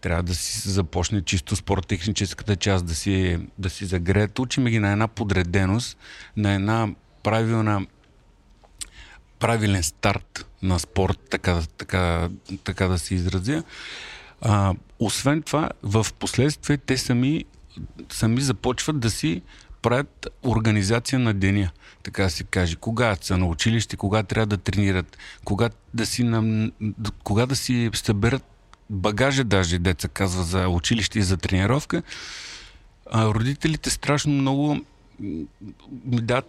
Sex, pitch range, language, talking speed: male, 95-120 Hz, Bulgarian, 125 wpm